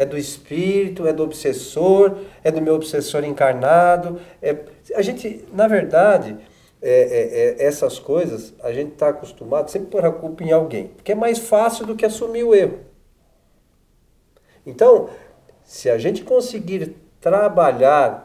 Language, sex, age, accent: Portuguese, male, 50-69, Brazilian